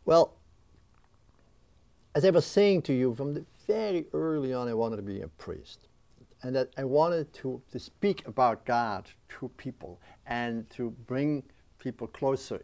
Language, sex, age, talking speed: English, male, 50-69, 160 wpm